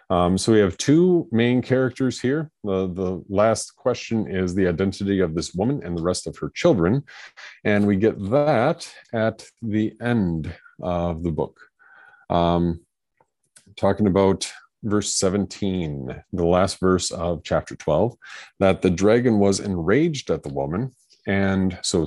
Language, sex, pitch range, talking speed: English, male, 85-105 Hz, 150 wpm